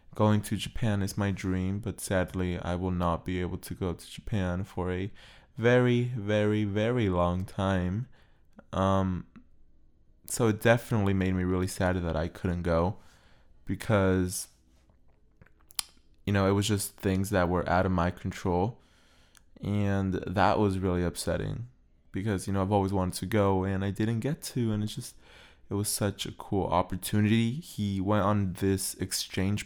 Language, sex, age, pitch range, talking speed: English, male, 20-39, 90-105 Hz, 165 wpm